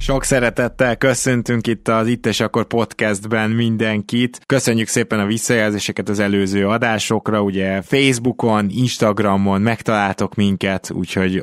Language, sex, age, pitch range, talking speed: Hungarian, male, 20-39, 100-120 Hz, 115 wpm